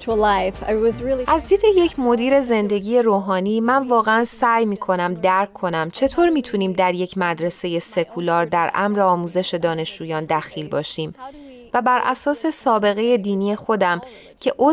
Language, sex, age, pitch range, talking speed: Persian, female, 30-49, 180-230 Hz, 125 wpm